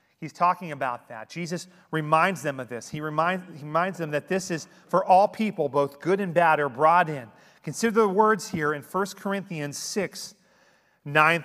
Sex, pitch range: male, 160-215 Hz